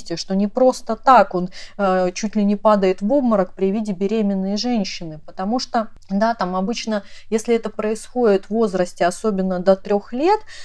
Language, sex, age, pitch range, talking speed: Russian, female, 30-49, 195-240 Hz, 170 wpm